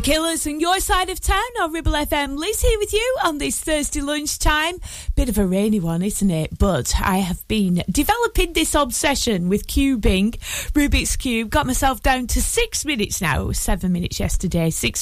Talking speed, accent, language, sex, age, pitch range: 190 wpm, British, English, female, 30-49, 180-255 Hz